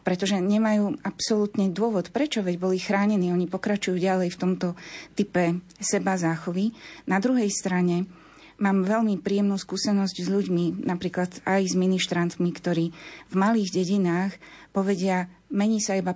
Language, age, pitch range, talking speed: Slovak, 30-49, 175-210 Hz, 135 wpm